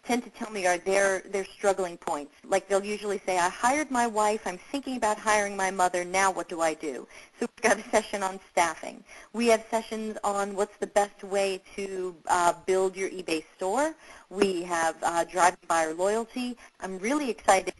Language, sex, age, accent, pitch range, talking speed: English, female, 40-59, American, 180-220 Hz, 200 wpm